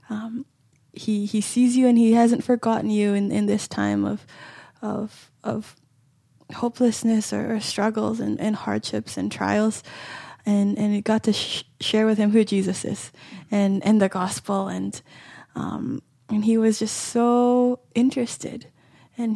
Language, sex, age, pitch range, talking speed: English, female, 10-29, 200-230 Hz, 160 wpm